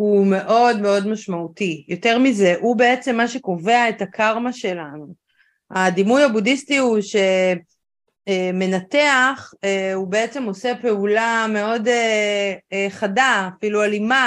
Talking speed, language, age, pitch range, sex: 105 wpm, Hebrew, 30-49, 190-235 Hz, female